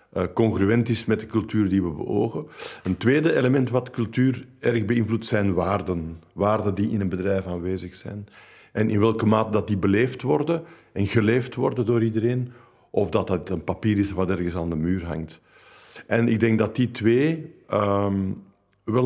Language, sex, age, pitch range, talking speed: Dutch, male, 50-69, 100-120 Hz, 180 wpm